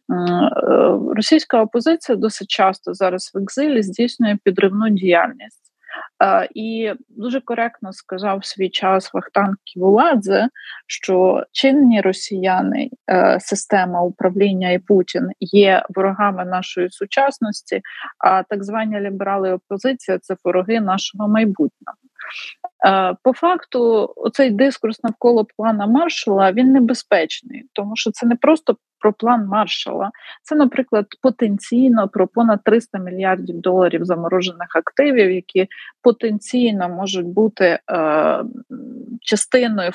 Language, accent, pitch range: Ukrainian, native, 185-240 Hz